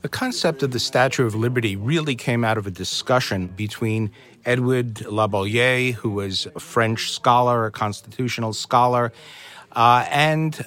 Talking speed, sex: 145 wpm, male